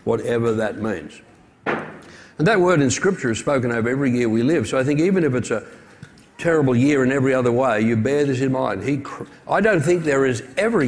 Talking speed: 220 wpm